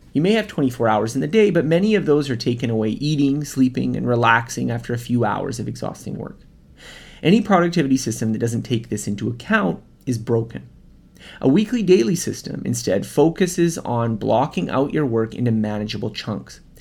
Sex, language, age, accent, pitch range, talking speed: male, English, 30-49, American, 115-170 Hz, 180 wpm